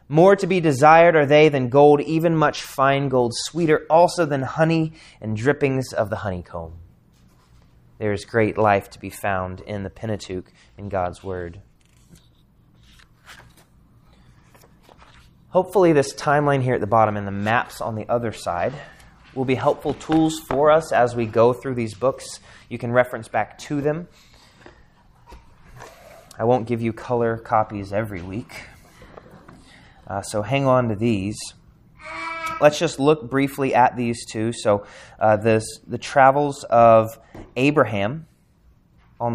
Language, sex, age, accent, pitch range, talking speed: English, male, 30-49, American, 110-145 Hz, 145 wpm